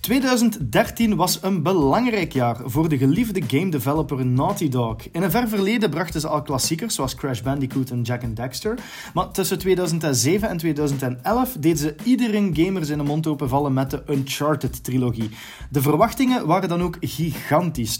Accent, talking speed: Dutch, 160 wpm